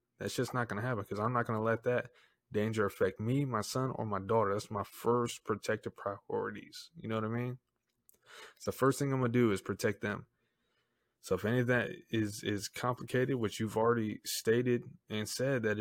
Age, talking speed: 20-39, 205 wpm